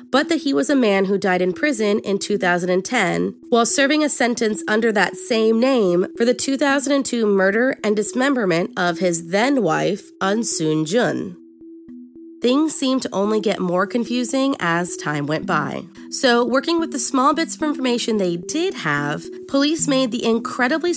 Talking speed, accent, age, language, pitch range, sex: 165 wpm, American, 30-49, English, 180-255 Hz, female